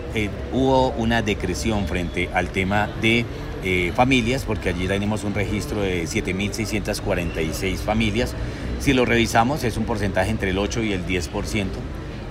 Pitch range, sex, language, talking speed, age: 90-110 Hz, male, Spanish, 145 wpm, 40-59